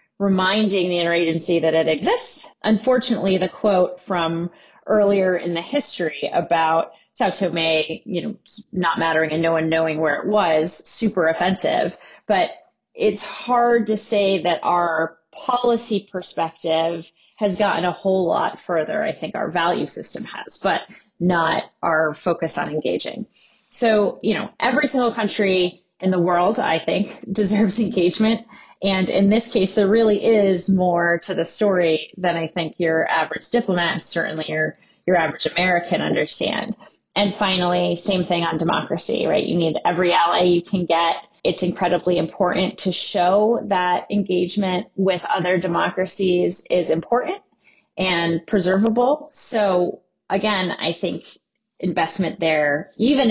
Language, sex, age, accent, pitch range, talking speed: English, female, 30-49, American, 170-210 Hz, 145 wpm